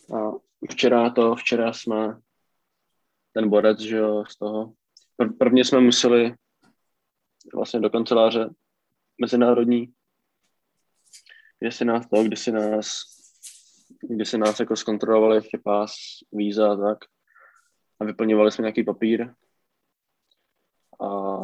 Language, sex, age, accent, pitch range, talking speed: Czech, male, 20-39, native, 105-115 Hz, 115 wpm